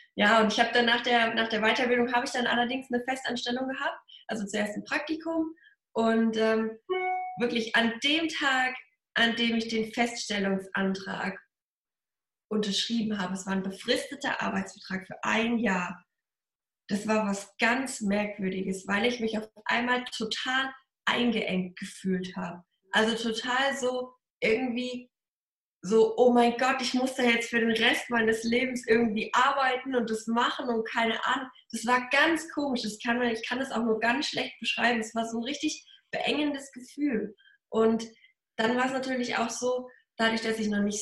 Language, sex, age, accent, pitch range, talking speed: German, female, 20-39, German, 215-255 Hz, 165 wpm